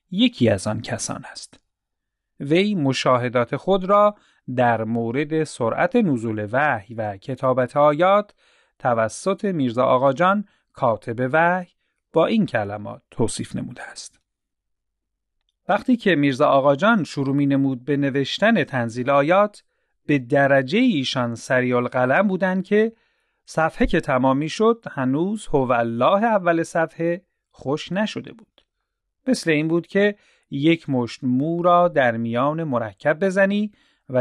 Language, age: Persian, 40-59